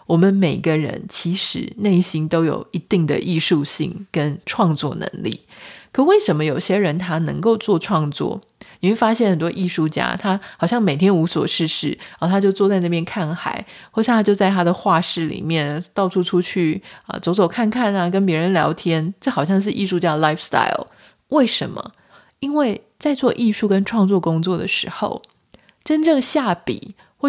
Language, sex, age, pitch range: Chinese, female, 20-39, 170-225 Hz